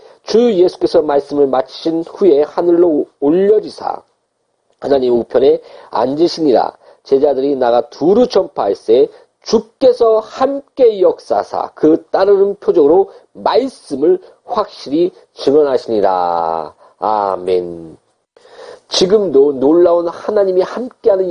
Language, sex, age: Korean, male, 40-59